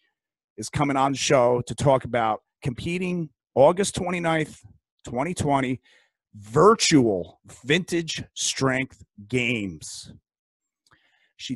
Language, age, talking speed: English, 40-59, 90 wpm